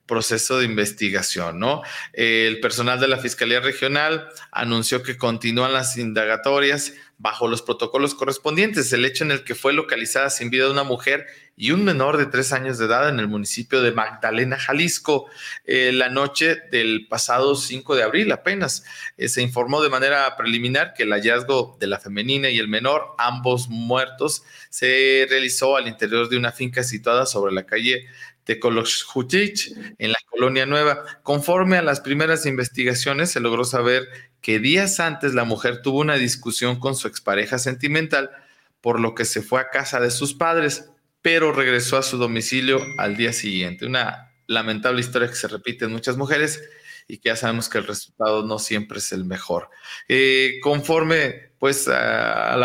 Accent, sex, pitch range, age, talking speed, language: Mexican, male, 115-140 Hz, 40-59, 170 wpm, Spanish